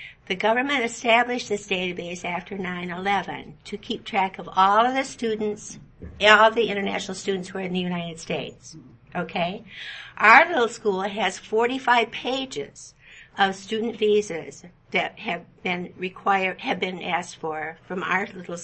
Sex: female